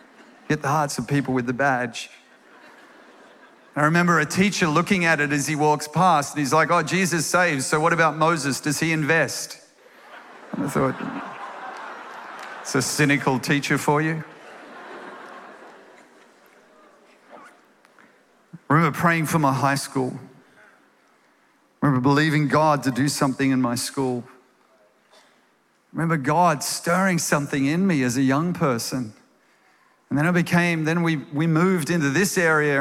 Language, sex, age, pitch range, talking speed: Swedish, male, 50-69, 140-165 Hz, 140 wpm